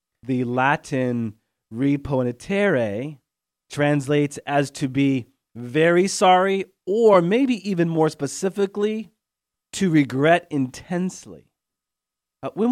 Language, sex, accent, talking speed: English, male, American, 90 wpm